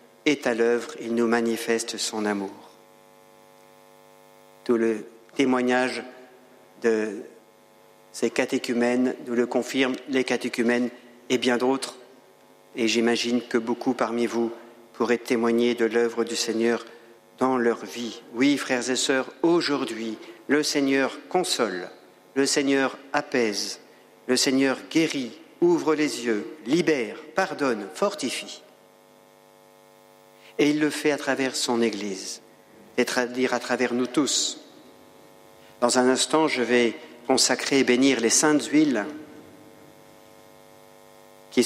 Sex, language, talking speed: male, French, 120 wpm